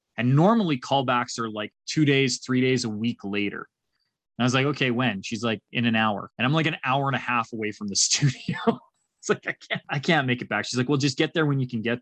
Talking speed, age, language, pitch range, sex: 265 wpm, 20-39, English, 110-130 Hz, male